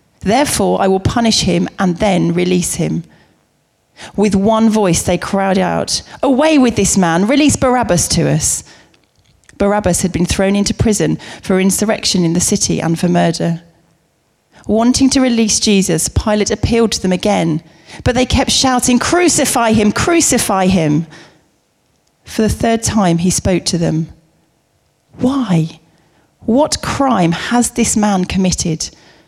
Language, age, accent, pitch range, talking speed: English, 40-59, British, 170-220 Hz, 140 wpm